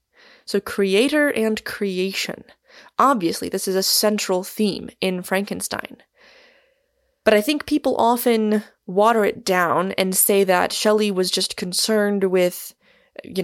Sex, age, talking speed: female, 20-39, 130 wpm